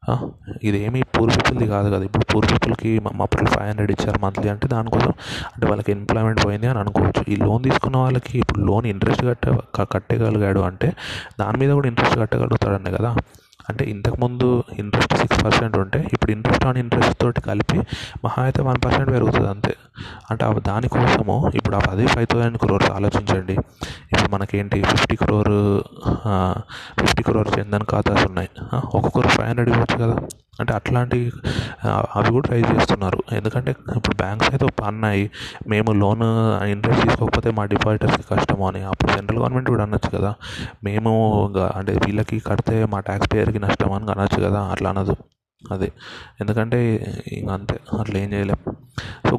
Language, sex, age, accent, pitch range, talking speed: Telugu, male, 20-39, native, 100-120 Hz, 140 wpm